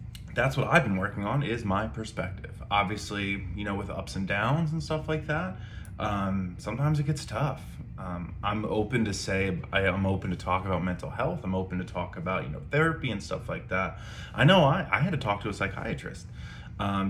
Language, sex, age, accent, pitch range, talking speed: English, male, 20-39, American, 95-115 Hz, 215 wpm